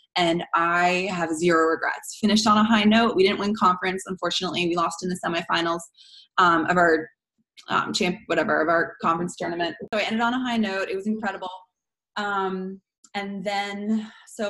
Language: English